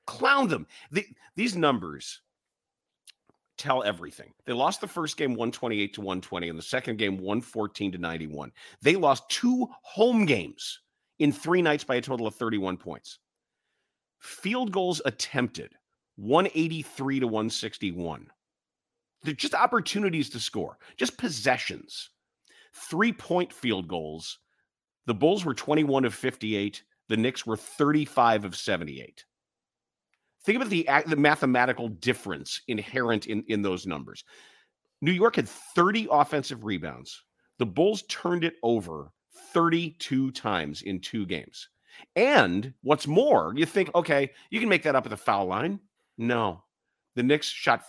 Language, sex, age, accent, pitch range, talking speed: English, male, 40-59, American, 105-170 Hz, 135 wpm